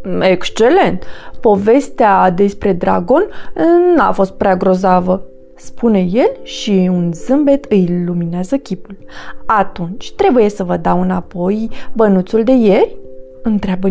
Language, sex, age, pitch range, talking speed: Romanian, female, 20-39, 180-250 Hz, 125 wpm